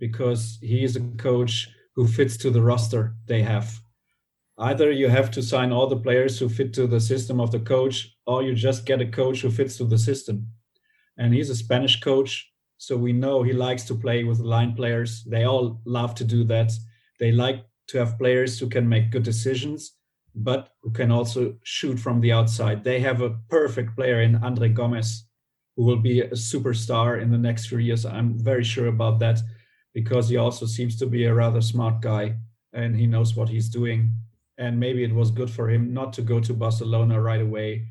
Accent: German